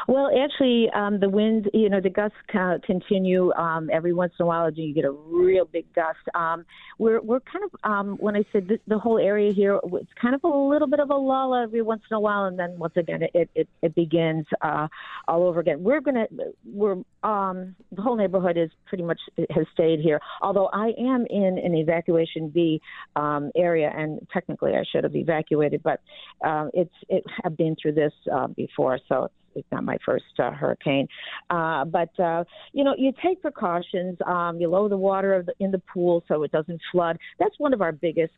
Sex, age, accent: female, 50-69, American